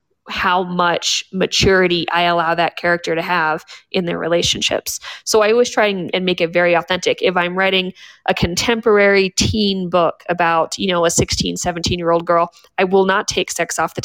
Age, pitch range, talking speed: 20-39, 170-195 Hz, 190 wpm